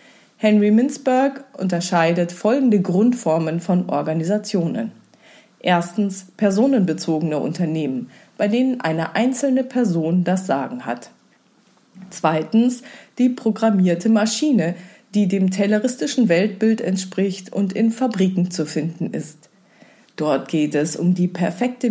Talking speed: 105 wpm